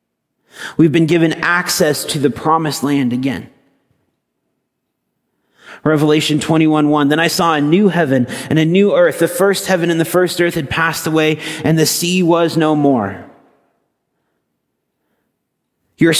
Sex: male